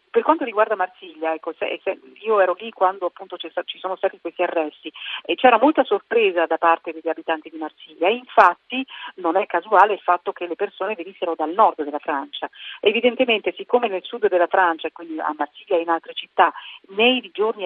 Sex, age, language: female, 40-59, Italian